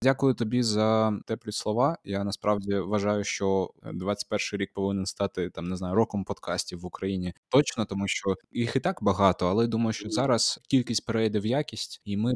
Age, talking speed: 20-39, 180 wpm